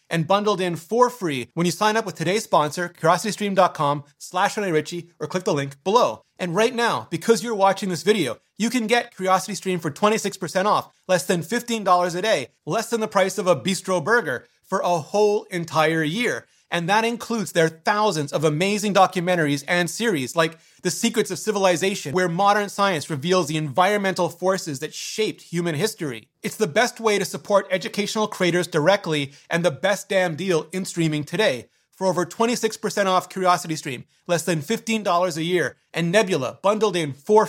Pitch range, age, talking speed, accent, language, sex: 165-205 Hz, 30-49, 180 wpm, American, English, male